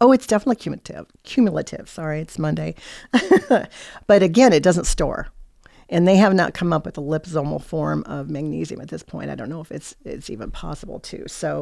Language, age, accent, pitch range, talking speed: English, 50-69, American, 160-195 Hz, 195 wpm